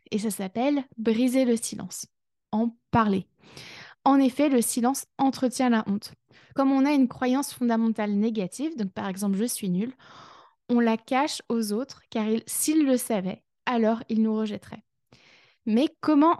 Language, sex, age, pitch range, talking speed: French, female, 20-39, 215-265 Hz, 155 wpm